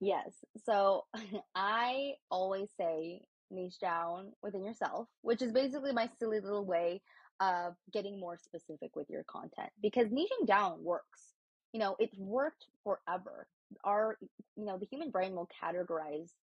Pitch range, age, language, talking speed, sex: 170-215 Hz, 20-39, English, 145 wpm, female